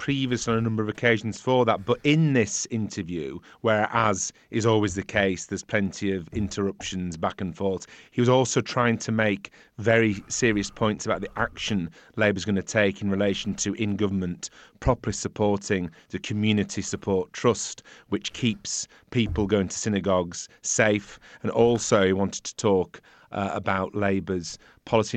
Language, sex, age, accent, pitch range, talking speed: English, male, 40-59, British, 95-115 Hz, 160 wpm